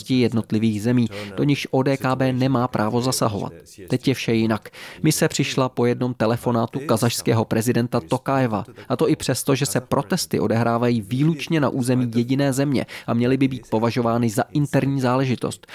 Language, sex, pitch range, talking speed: Czech, male, 110-130 Hz, 155 wpm